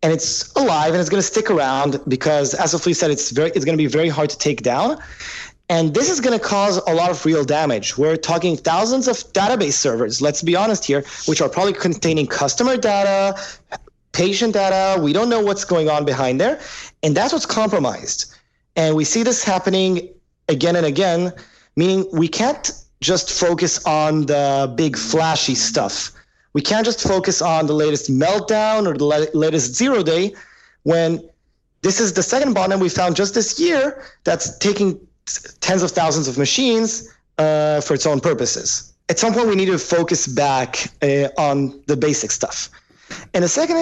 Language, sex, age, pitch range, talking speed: English, male, 30-49, 150-195 Hz, 180 wpm